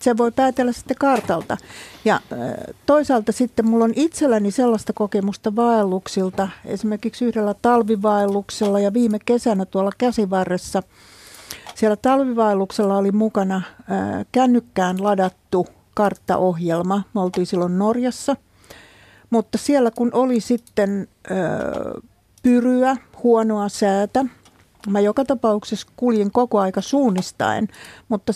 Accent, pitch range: native, 195-245 Hz